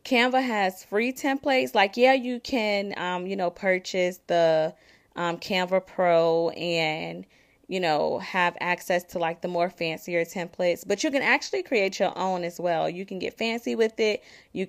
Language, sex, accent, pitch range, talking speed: English, female, American, 175-225 Hz, 175 wpm